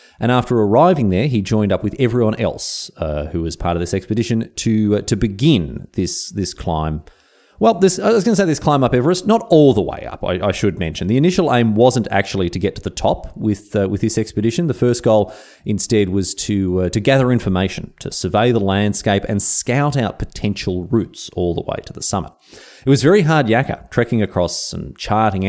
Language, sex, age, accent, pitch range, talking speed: English, male, 30-49, Australian, 95-125 Hz, 220 wpm